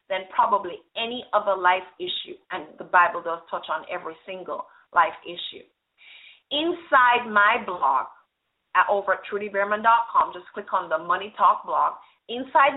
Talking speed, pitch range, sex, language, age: 140 wpm, 195-275 Hz, female, English, 30-49